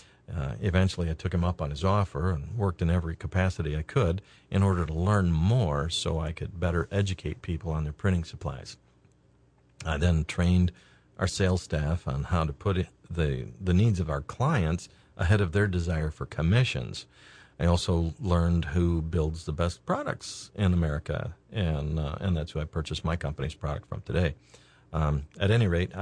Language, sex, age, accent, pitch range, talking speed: English, male, 50-69, American, 80-95 Hz, 185 wpm